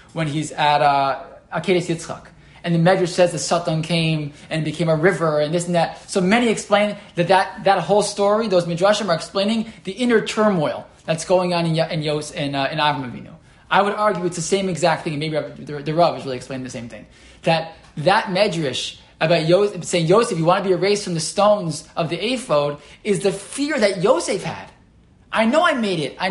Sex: male